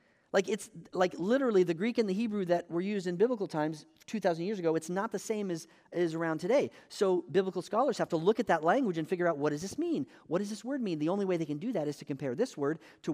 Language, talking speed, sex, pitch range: English, 275 wpm, male, 150-220 Hz